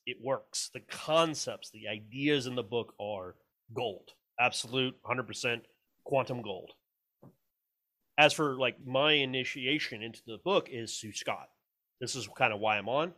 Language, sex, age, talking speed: English, male, 30-49, 155 wpm